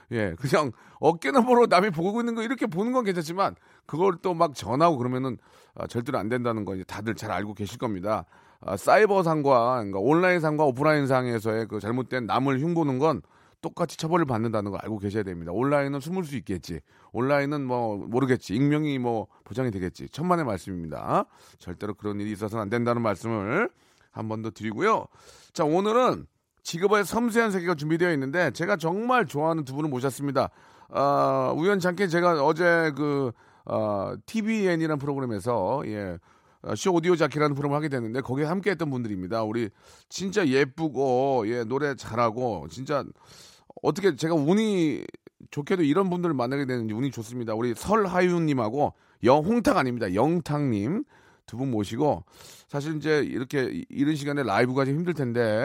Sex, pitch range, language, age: male, 110-165 Hz, Korean, 40-59